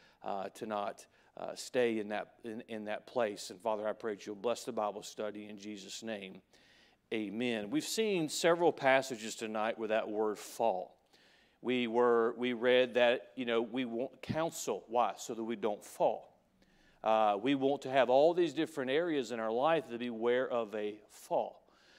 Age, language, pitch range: 40-59, English, 115-145 Hz